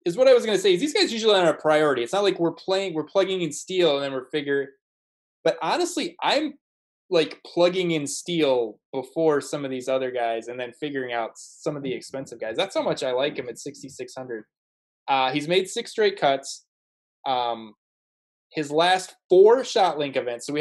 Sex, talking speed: male, 210 wpm